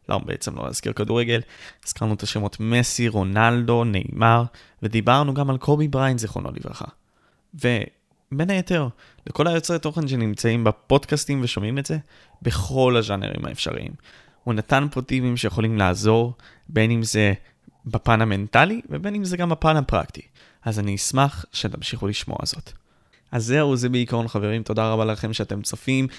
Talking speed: 150 wpm